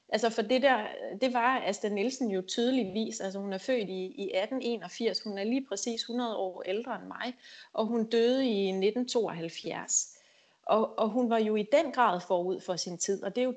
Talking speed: 205 wpm